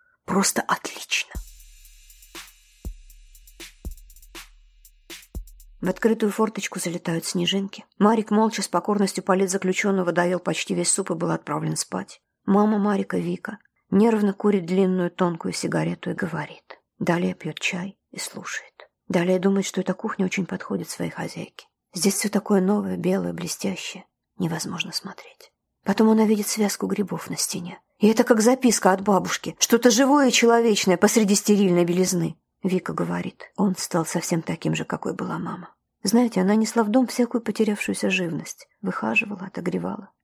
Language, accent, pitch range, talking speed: Russian, native, 185-215 Hz, 135 wpm